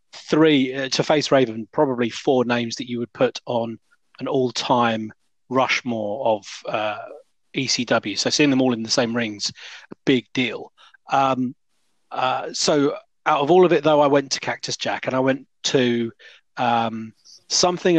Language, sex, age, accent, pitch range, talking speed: English, male, 30-49, British, 120-160 Hz, 165 wpm